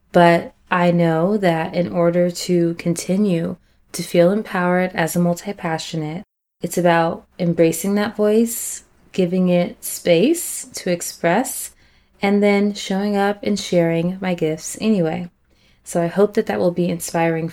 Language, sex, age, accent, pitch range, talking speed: English, female, 20-39, American, 170-210 Hz, 140 wpm